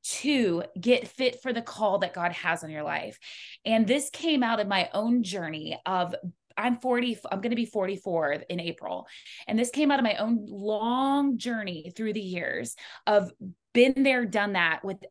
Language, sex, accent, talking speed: English, female, American, 190 wpm